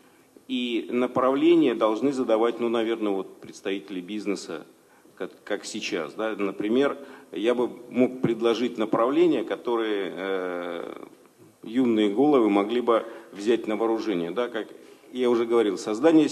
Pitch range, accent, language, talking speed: 110-150 Hz, native, Russian, 120 wpm